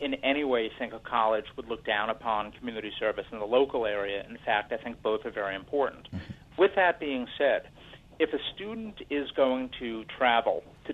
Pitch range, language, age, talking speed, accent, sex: 110-150 Hz, English, 50-69, 205 wpm, American, male